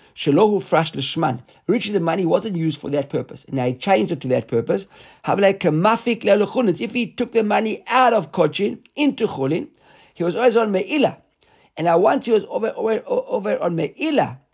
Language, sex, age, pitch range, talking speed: English, male, 50-69, 145-205 Hz, 195 wpm